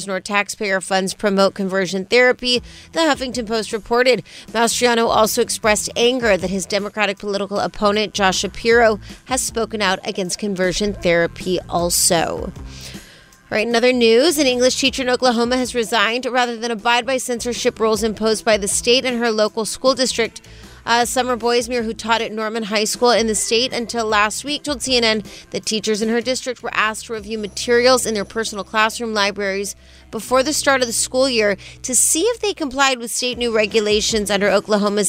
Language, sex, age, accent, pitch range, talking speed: English, female, 30-49, American, 205-245 Hz, 180 wpm